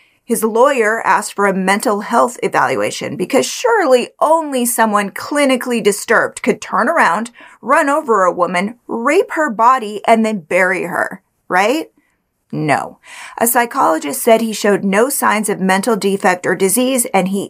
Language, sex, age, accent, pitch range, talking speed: English, female, 30-49, American, 200-255 Hz, 150 wpm